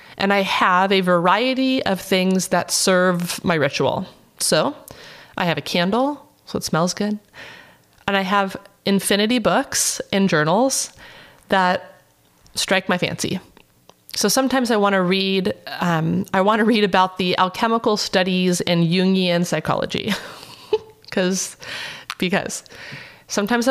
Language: English